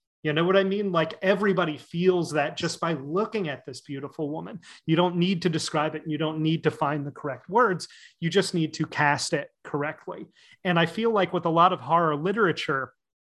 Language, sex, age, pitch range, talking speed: English, male, 30-49, 150-185 Hz, 215 wpm